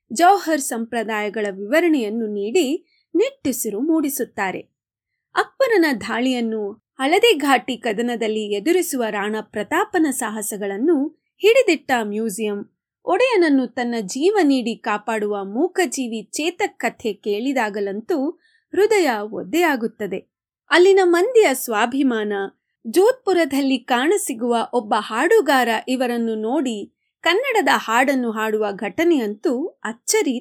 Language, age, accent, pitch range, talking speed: Kannada, 30-49, native, 220-345 Hz, 80 wpm